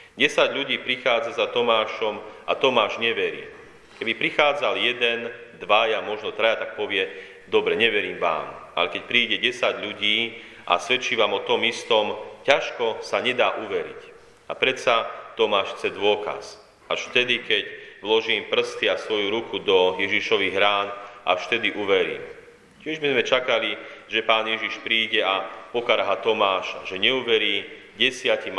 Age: 40-59